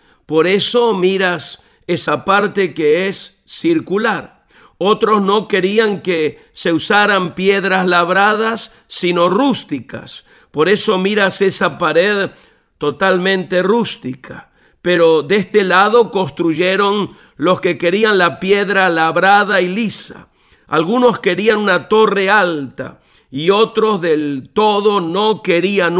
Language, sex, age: Spanish, male, 50-69